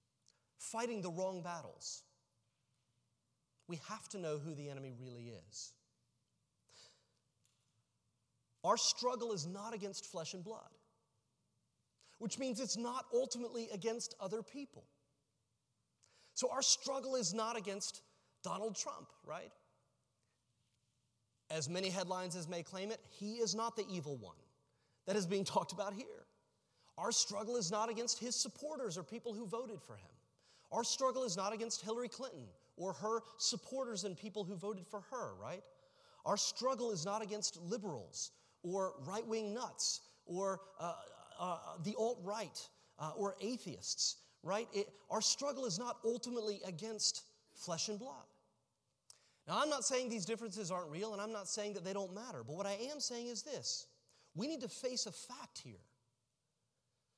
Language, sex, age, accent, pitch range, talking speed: English, male, 30-49, American, 150-230 Hz, 150 wpm